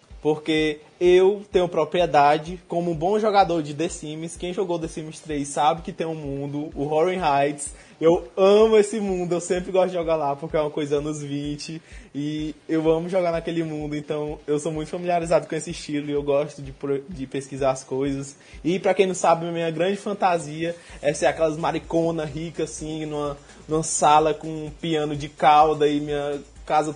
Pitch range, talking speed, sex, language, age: 150-180 Hz, 195 wpm, male, Portuguese, 20-39